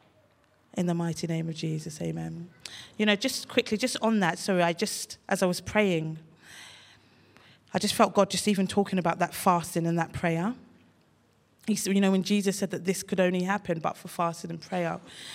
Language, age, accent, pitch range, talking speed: English, 20-39, British, 170-210 Hz, 190 wpm